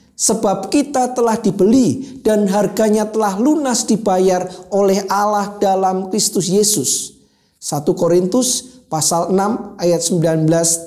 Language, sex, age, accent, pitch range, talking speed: Indonesian, male, 40-59, native, 185-245 Hz, 110 wpm